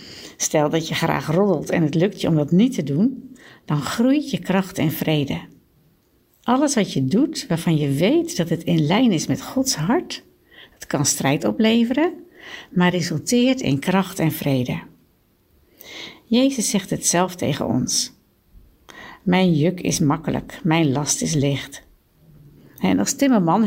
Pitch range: 160-235 Hz